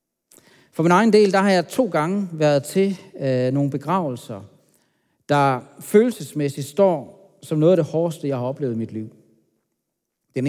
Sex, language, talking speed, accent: male, Danish, 160 wpm, native